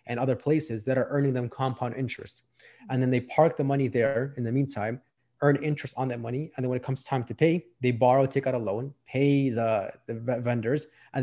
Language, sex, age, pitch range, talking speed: English, male, 20-39, 125-140 Hz, 230 wpm